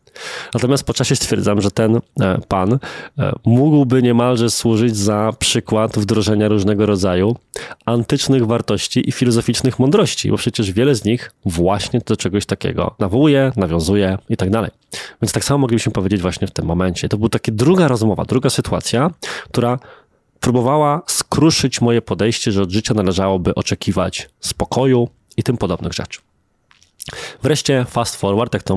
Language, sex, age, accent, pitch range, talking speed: Polish, male, 20-39, native, 100-120 Hz, 145 wpm